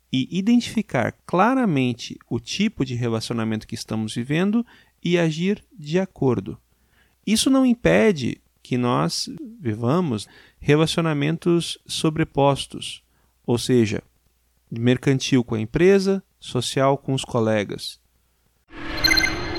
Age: 40-59